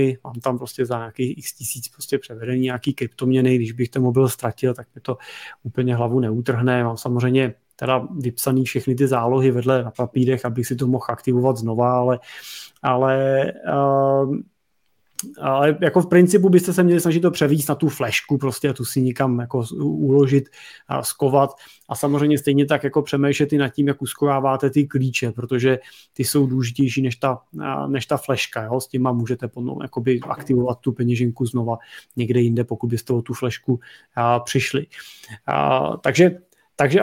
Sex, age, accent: male, 30-49, native